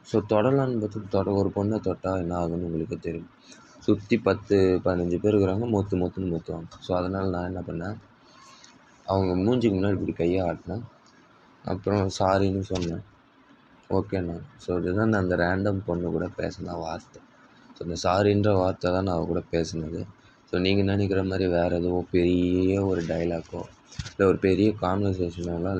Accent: native